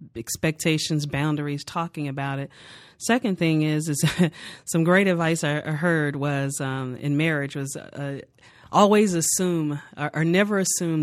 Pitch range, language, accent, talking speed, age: 145-180 Hz, English, American, 145 wpm, 30-49